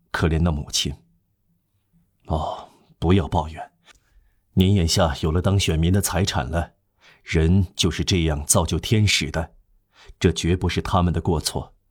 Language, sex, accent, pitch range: Chinese, male, native, 85-105 Hz